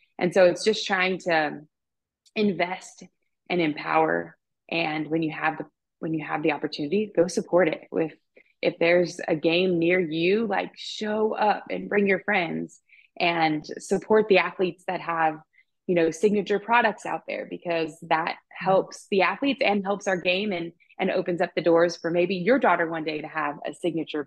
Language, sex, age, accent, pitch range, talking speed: English, female, 20-39, American, 160-190 Hz, 180 wpm